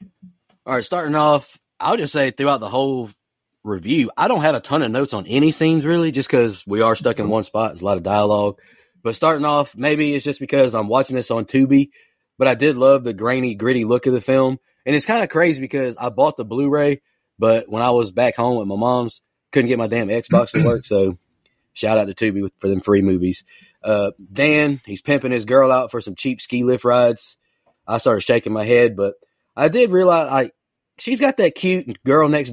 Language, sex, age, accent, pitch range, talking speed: English, male, 20-39, American, 115-145 Hz, 225 wpm